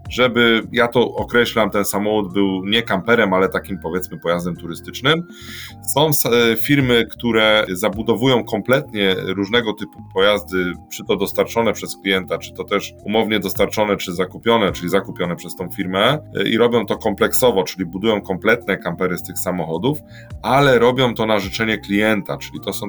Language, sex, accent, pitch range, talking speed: Polish, male, native, 95-120 Hz, 155 wpm